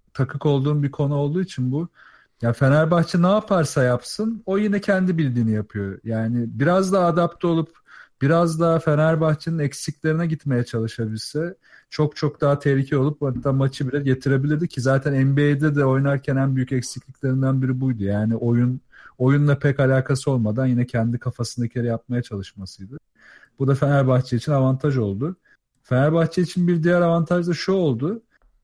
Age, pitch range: 40-59, 125-155 Hz